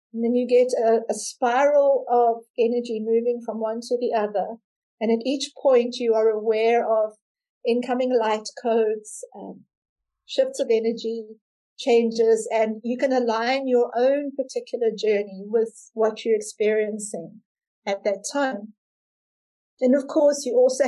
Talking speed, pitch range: 145 wpm, 220-255 Hz